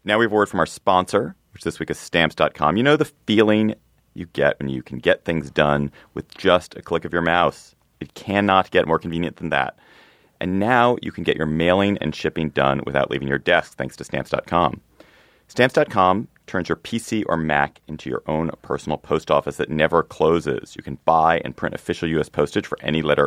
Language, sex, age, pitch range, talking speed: English, male, 30-49, 70-105 Hz, 210 wpm